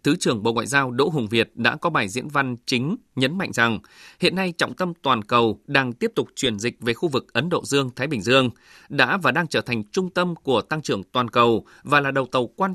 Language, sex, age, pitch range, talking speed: Vietnamese, male, 20-39, 120-155 Hz, 250 wpm